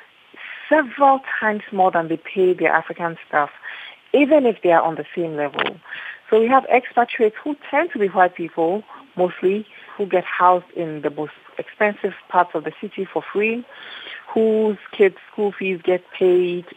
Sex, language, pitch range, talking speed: female, English, 175-220 Hz, 170 wpm